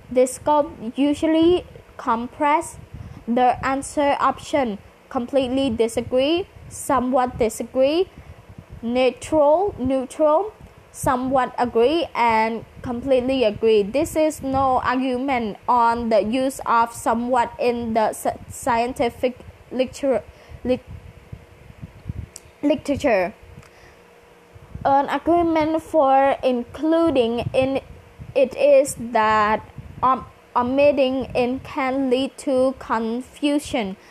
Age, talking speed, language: 20-39, 80 wpm, English